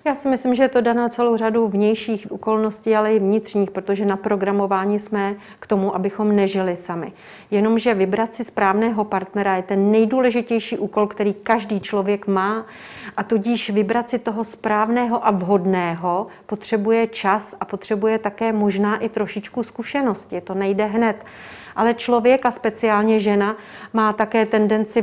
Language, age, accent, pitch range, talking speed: Czech, 40-59, native, 200-225 Hz, 155 wpm